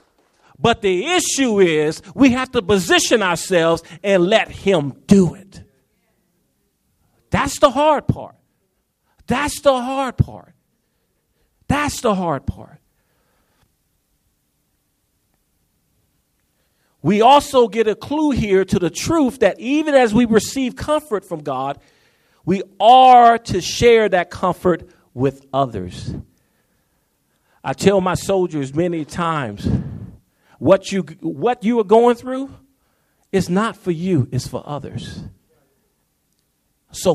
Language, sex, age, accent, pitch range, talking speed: English, male, 40-59, American, 165-250 Hz, 115 wpm